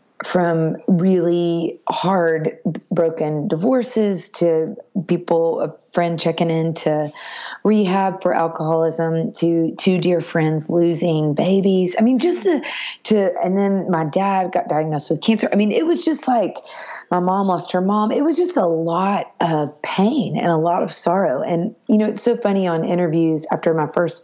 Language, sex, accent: English, female, American